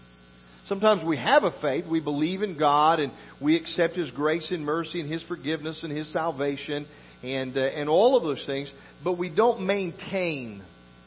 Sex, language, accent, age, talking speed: male, English, American, 40-59, 180 wpm